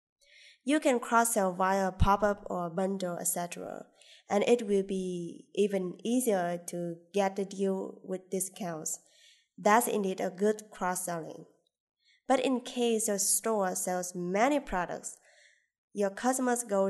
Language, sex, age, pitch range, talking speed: English, female, 20-39, 180-215 Hz, 130 wpm